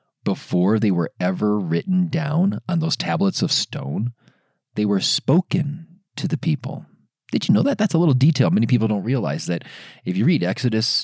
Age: 40-59